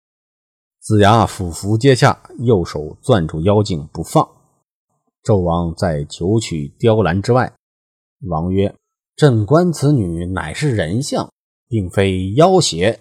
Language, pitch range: Chinese, 85-115 Hz